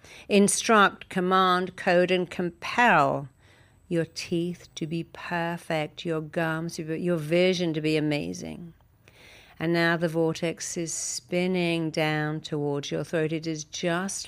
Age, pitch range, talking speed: 50-69, 155-180 Hz, 125 wpm